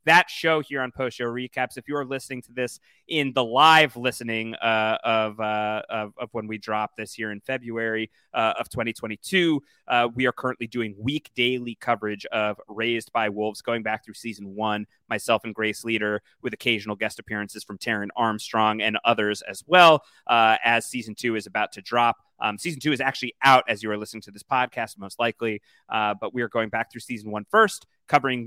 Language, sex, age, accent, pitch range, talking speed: English, male, 30-49, American, 110-150 Hz, 205 wpm